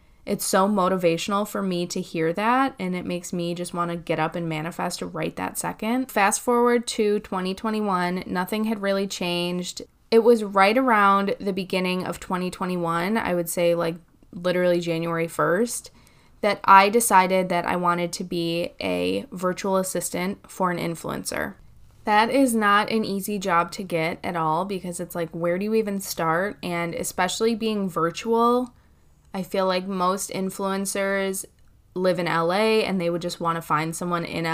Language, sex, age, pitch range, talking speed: English, female, 10-29, 170-200 Hz, 170 wpm